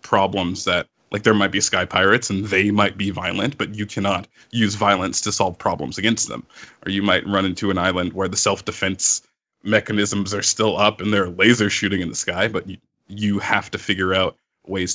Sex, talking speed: male, 210 wpm